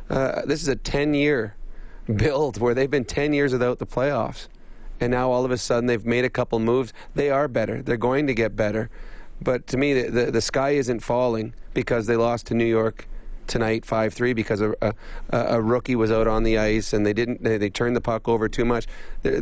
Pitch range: 115-130 Hz